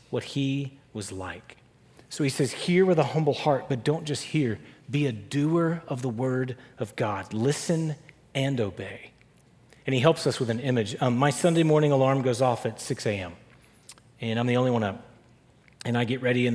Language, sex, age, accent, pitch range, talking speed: English, male, 40-59, American, 115-140 Hz, 200 wpm